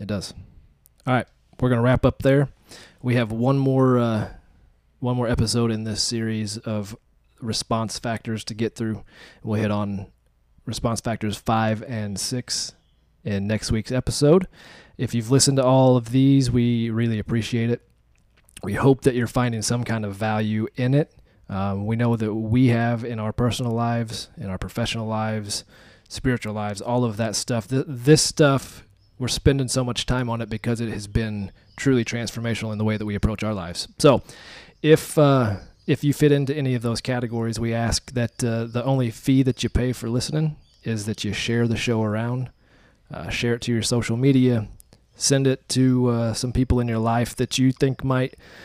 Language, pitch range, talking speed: English, 110-125 Hz, 190 wpm